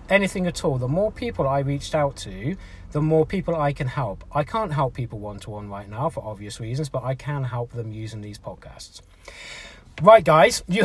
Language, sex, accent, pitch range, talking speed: English, male, British, 130-170 Hz, 205 wpm